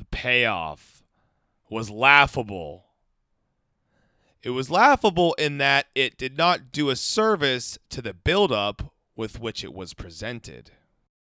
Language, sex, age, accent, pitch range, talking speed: English, male, 30-49, American, 100-145 Hz, 120 wpm